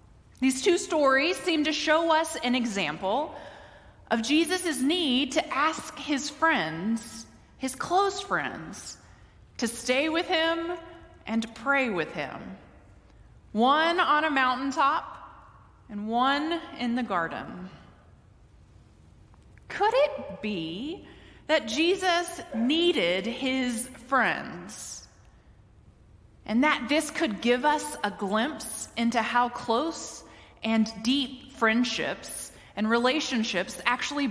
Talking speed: 105 wpm